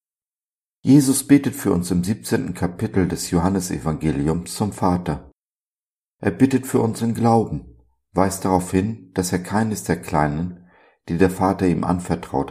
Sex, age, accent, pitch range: male, 50-69, German, 80-105 Hz